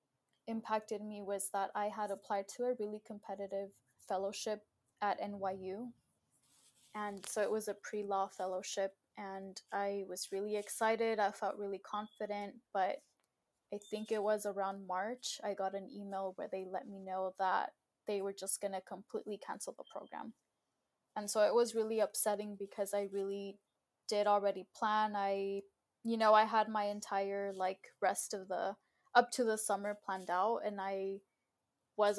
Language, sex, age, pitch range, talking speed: English, female, 10-29, 195-215 Hz, 165 wpm